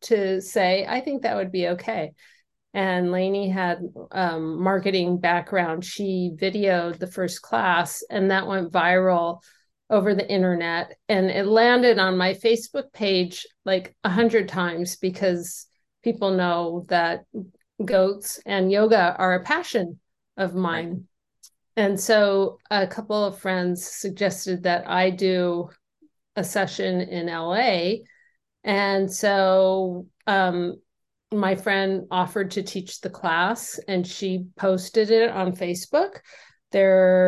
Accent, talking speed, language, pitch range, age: American, 130 wpm, English, 180-215 Hz, 50-69